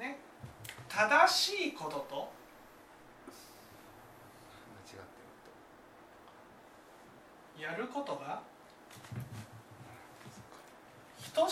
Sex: male